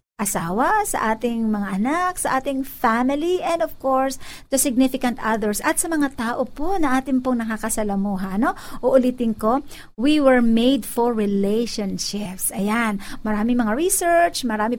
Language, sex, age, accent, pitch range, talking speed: Filipino, female, 50-69, native, 215-275 Hz, 145 wpm